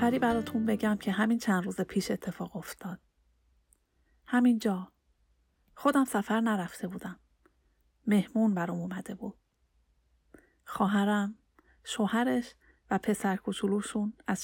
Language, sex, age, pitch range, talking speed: Persian, female, 40-59, 180-225 Hz, 105 wpm